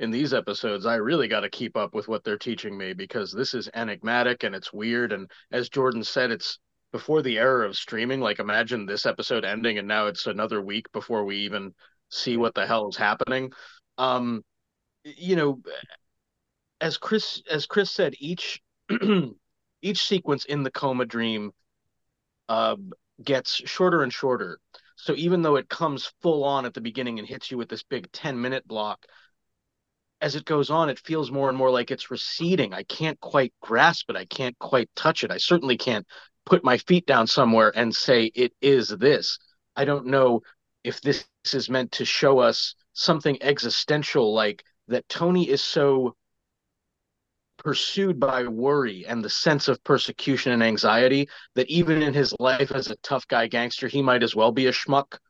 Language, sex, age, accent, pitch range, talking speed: English, male, 30-49, American, 120-150 Hz, 180 wpm